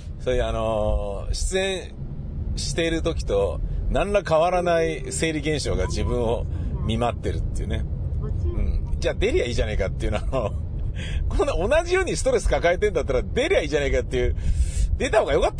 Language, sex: Japanese, male